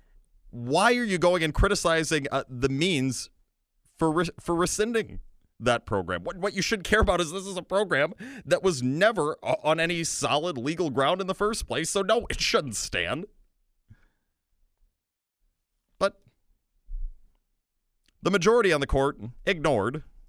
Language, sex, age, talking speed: English, male, 30-49, 145 wpm